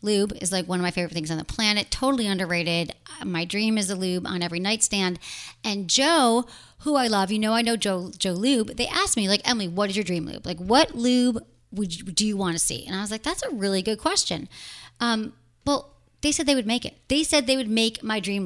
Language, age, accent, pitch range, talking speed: English, 30-49, American, 185-245 Hz, 250 wpm